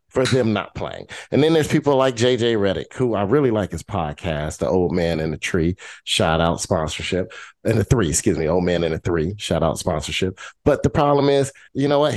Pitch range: 95-135 Hz